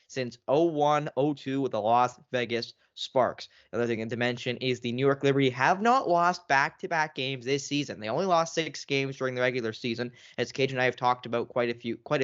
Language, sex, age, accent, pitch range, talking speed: English, male, 10-29, American, 120-145 Hz, 215 wpm